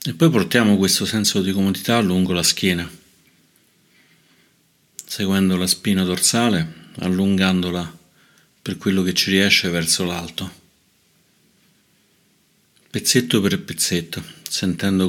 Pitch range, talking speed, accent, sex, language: 85-95 Hz, 105 wpm, native, male, Italian